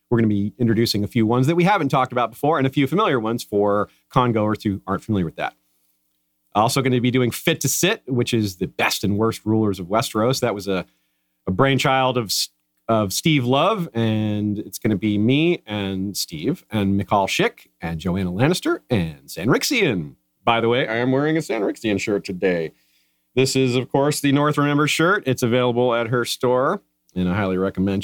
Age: 40-59